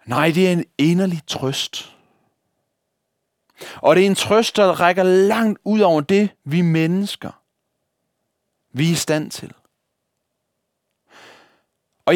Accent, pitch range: native, 135-185 Hz